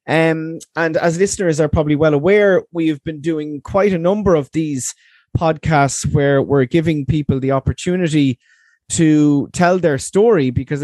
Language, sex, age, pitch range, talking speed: English, male, 20-39, 135-170 Hz, 155 wpm